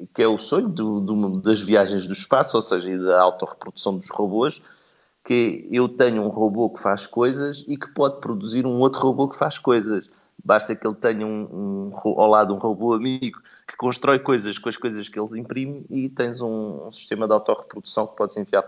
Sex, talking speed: male, 205 wpm